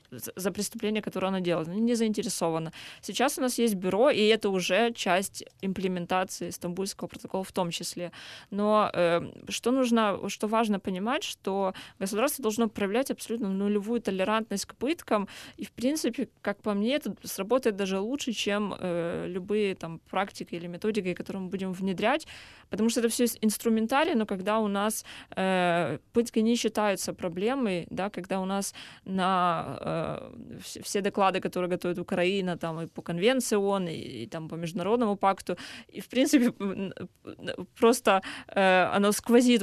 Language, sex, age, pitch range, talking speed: Russian, female, 20-39, 180-225 Hz, 155 wpm